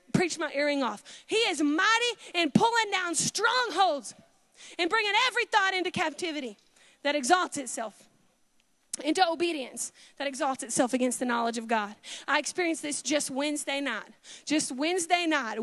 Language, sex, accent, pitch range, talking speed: English, female, American, 265-320 Hz, 150 wpm